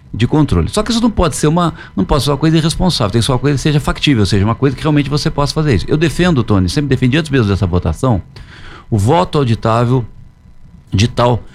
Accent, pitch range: Brazilian, 100-145 Hz